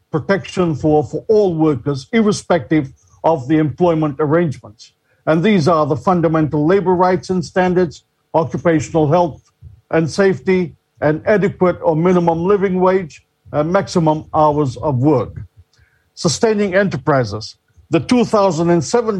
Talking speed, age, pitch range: 120 wpm, 50-69, 150-185 Hz